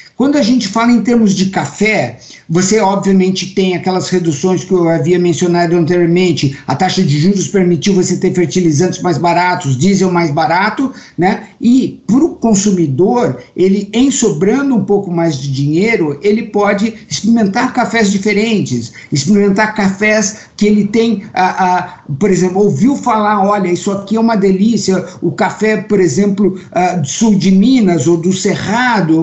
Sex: male